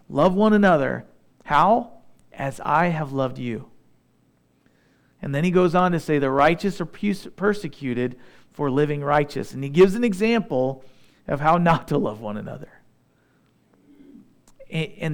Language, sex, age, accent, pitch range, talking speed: English, male, 40-59, American, 135-185 Hz, 145 wpm